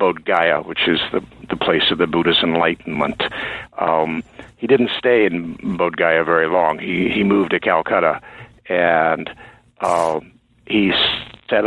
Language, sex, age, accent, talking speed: English, male, 60-79, American, 150 wpm